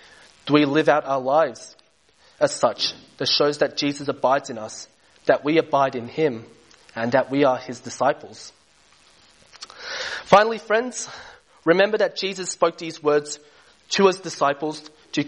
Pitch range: 135-175 Hz